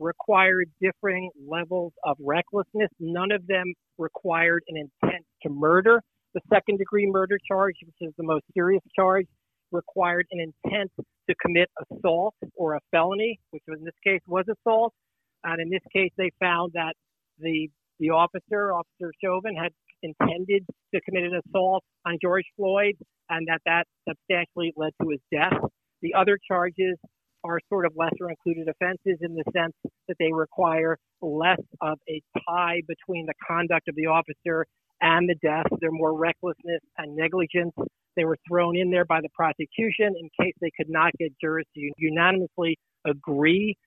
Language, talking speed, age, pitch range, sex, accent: English, 160 wpm, 50-69, 160-180 Hz, male, American